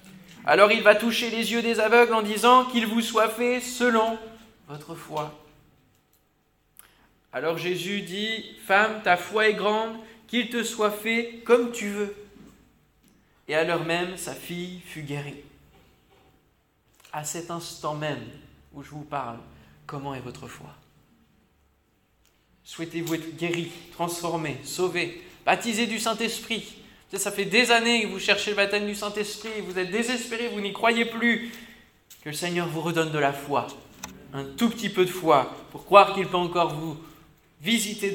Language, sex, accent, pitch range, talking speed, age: French, male, French, 155-220 Hz, 155 wpm, 20-39